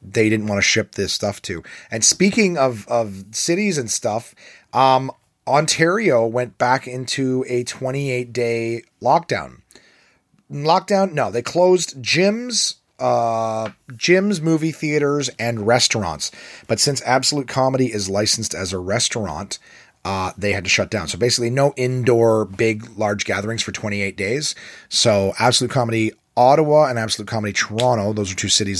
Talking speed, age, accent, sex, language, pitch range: 145 wpm, 30-49, American, male, English, 100-135 Hz